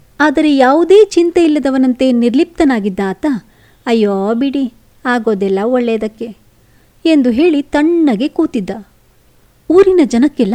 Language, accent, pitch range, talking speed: Kannada, native, 220-295 Hz, 85 wpm